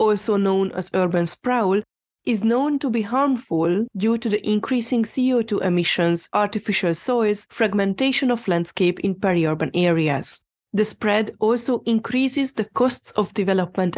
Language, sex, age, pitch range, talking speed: English, female, 30-49, 185-240 Hz, 135 wpm